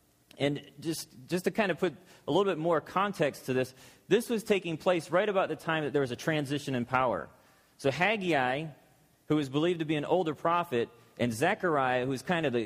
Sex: male